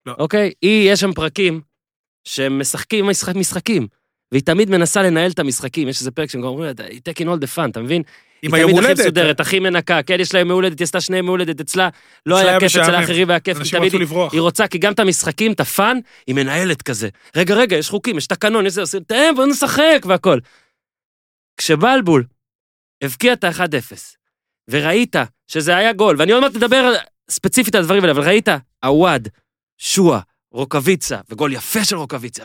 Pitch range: 145-210 Hz